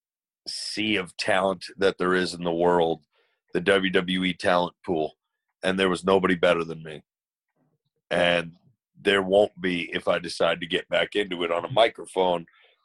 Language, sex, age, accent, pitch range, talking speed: Hebrew, male, 40-59, American, 90-100 Hz, 165 wpm